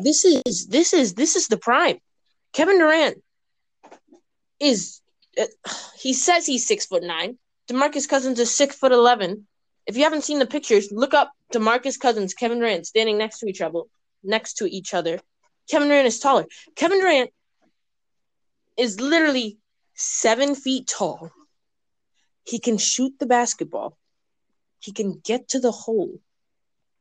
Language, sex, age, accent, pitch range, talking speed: English, female, 20-39, American, 220-300 Hz, 150 wpm